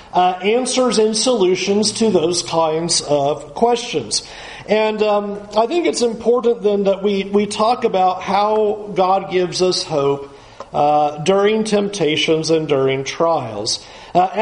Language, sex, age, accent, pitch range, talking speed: English, male, 50-69, American, 170-210 Hz, 135 wpm